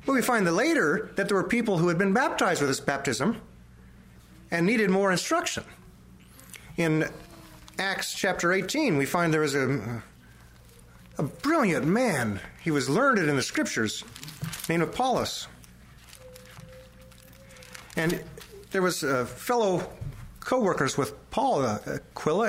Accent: American